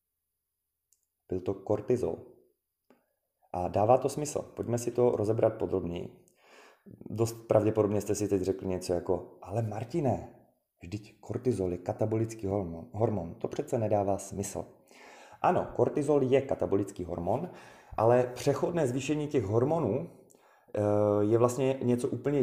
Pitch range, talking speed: 95-120 Hz, 125 wpm